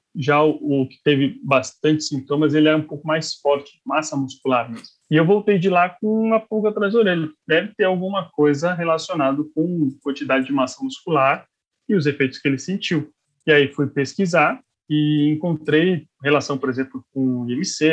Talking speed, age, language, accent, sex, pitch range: 175 wpm, 20-39, Portuguese, Brazilian, male, 135-180 Hz